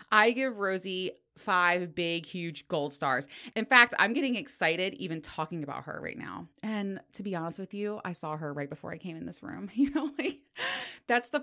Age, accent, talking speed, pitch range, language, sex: 20-39, American, 210 wpm, 155-215 Hz, English, female